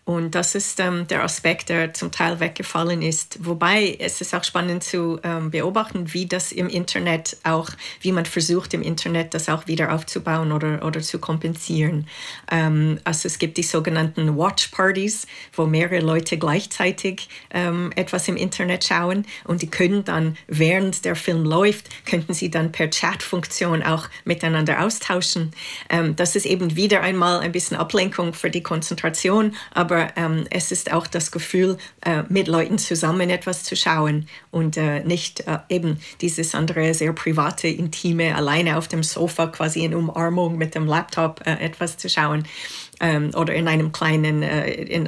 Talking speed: 170 wpm